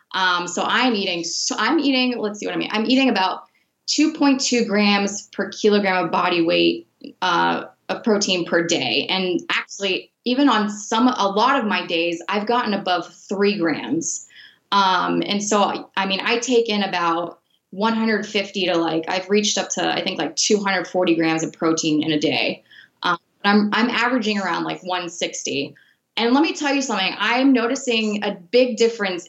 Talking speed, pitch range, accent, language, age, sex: 180 wpm, 180-230 Hz, American, English, 20-39, female